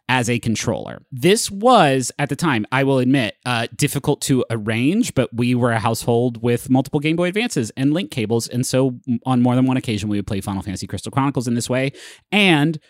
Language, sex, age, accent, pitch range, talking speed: English, male, 30-49, American, 110-145 Hz, 220 wpm